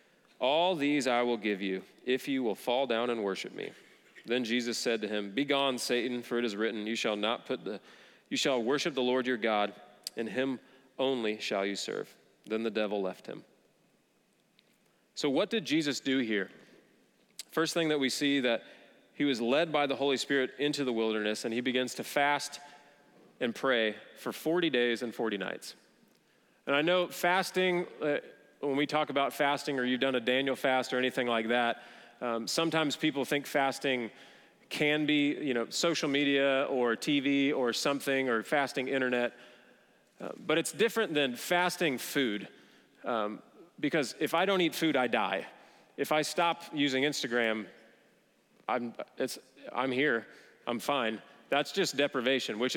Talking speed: 170 wpm